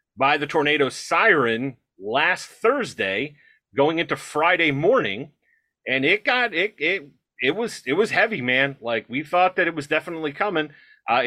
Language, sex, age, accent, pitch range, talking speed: English, male, 40-59, American, 130-170 Hz, 160 wpm